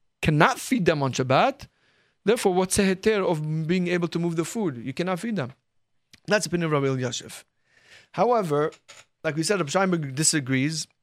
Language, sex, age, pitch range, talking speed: English, male, 30-49, 145-200 Hz, 175 wpm